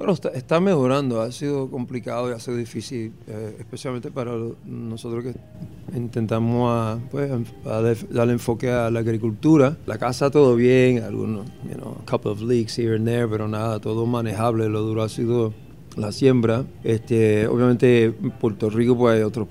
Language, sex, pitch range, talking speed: Spanish, male, 110-130 Hz, 180 wpm